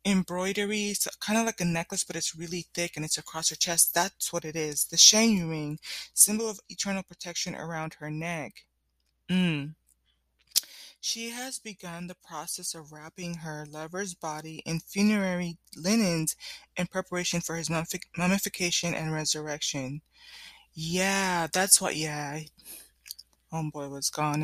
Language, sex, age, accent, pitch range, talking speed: English, female, 20-39, American, 155-185 Hz, 145 wpm